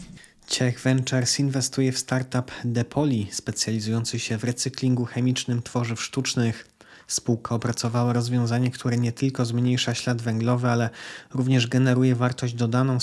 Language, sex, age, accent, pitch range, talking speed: Polish, male, 20-39, native, 115-125 Hz, 130 wpm